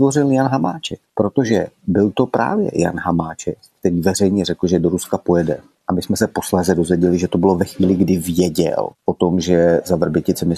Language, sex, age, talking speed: Czech, male, 30-49, 195 wpm